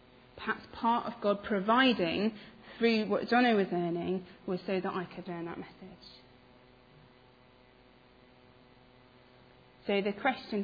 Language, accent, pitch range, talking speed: English, British, 155-235 Hz, 120 wpm